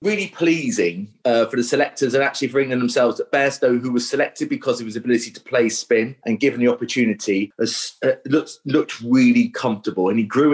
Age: 30-49